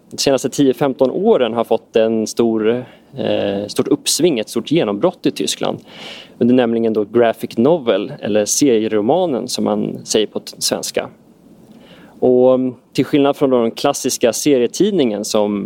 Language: Swedish